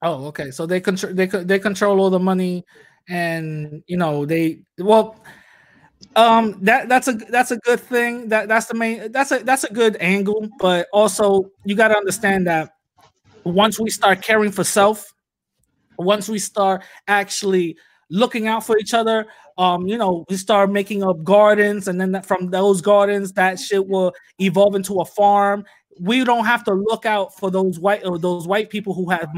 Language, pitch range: English, 190-230 Hz